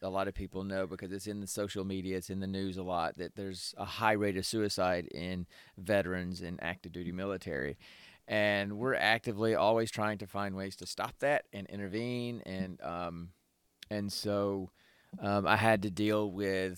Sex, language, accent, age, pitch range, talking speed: male, English, American, 30-49, 95-110 Hz, 190 wpm